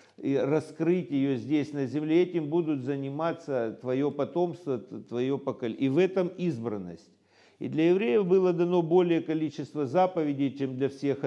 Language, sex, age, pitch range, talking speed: Russian, male, 50-69, 135-170 Hz, 150 wpm